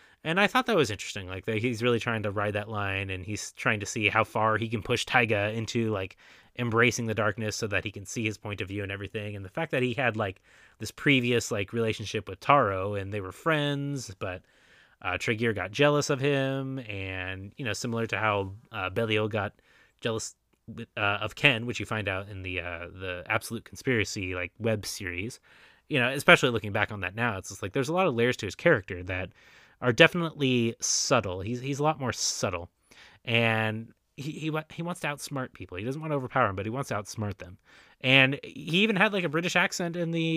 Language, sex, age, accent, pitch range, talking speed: English, male, 20-39, American, 100-135 Hz, 225 wpm